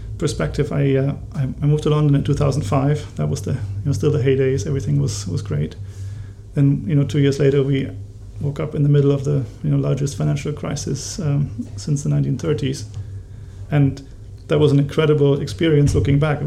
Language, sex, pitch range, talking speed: English, male, 100-145 Hz, 190 wpm